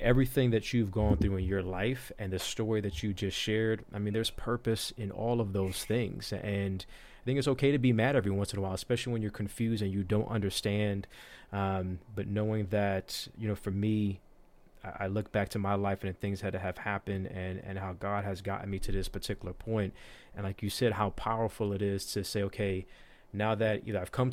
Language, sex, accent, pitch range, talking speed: English, male, American, 100-115 Hz, 225 wpm